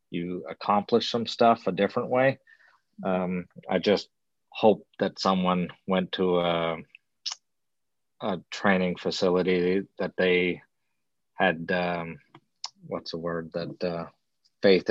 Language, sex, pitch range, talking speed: English, male, 85-95 Hz, 115 wpm